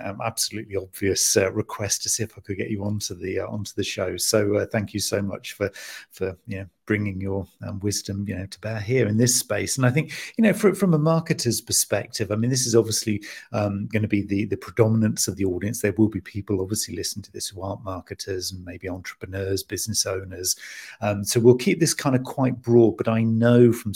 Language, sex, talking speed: English, male, 235 wpm